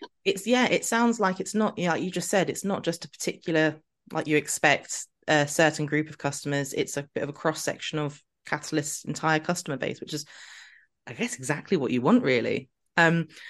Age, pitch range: 20-39, 150-210 Hz